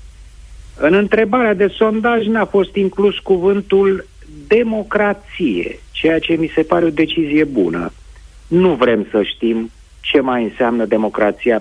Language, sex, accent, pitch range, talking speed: Romanian, male, native, 125-190 Hz, 135 wpm